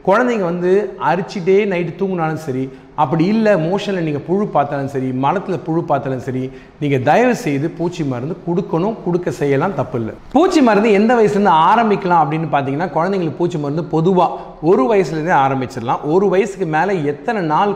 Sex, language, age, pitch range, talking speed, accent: male, Tamil, 30-49, 145-195 Hz, 155 wpm, native